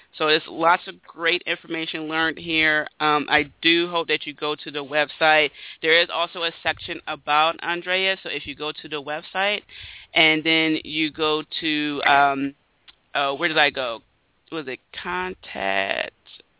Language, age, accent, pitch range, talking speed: English, 30-49, American, 150-175 Hz, 165 wpm